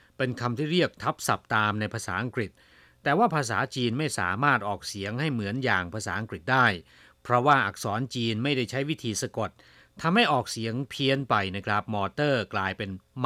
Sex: male